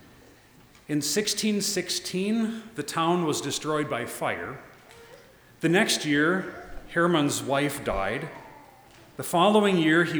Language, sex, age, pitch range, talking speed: English, male, 40-59, 135-165 Hz, 105 wpm